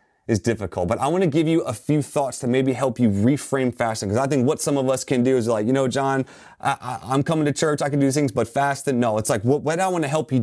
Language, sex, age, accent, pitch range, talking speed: English, male, 30-49, American, 105-140 Hz, 295 wpm